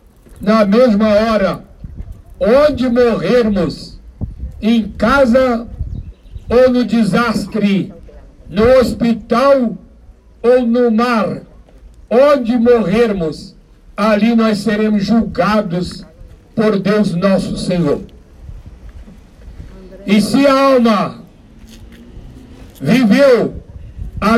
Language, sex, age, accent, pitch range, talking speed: Portuguese, male, 60-79, Brazilian, 200-240 Hz, 75 wpm